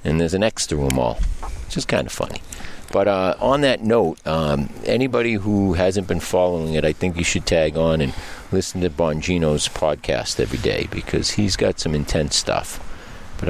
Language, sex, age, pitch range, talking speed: English, male, 50-69, 75-95 Hz, 190 wpm